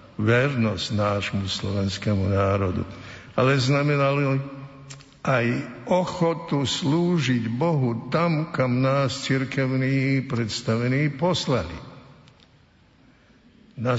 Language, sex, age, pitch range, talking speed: Slovak, male, 60-79, 105-135 Hz, 75 wpm